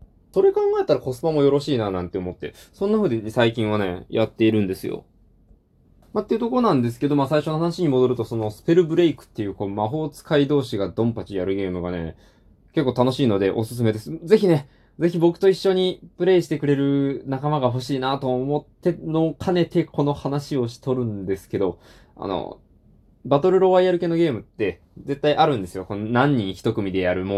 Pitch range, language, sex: 105-155 Hz, Japanese, male